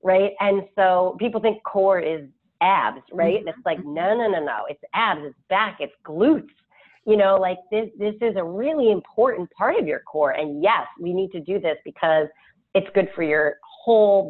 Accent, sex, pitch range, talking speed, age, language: American, female, 165-220 Hz, 200 wpm, 30-49, English